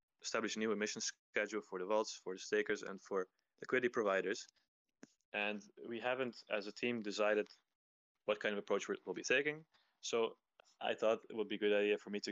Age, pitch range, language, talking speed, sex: 20-39, 95-110 Hz, English, 200 wpm, male